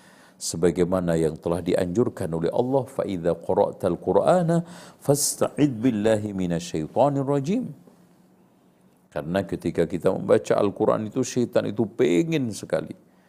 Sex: male